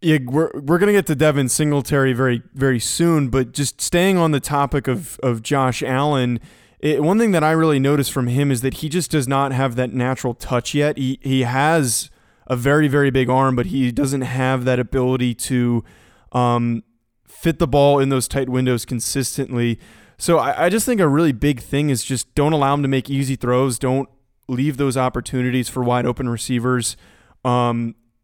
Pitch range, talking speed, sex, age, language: 125-145 Hz, 195 wpm, male, 20-39, English